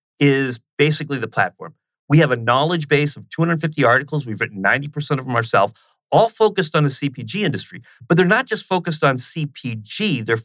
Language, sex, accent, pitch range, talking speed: English, male, American, 120-155 Hz, 185 wpm